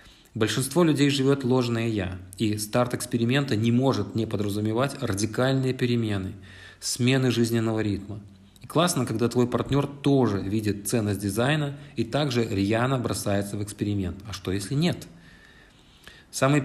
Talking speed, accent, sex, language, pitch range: 130 wpm, native, male, Russian, 105-130 Hz